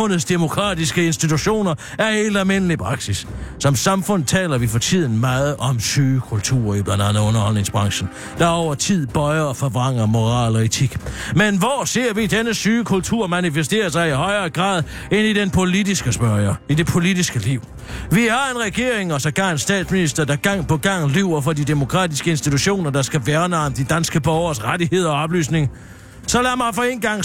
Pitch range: 150-200 Hz